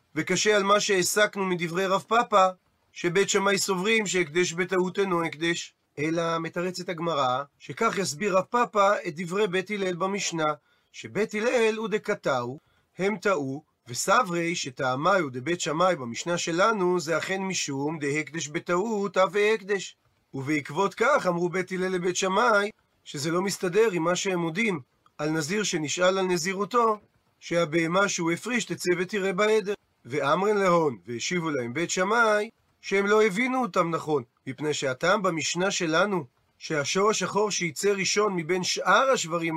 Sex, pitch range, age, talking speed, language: male, 165-205 Hz, 30-49, 140 wpm, Hebrew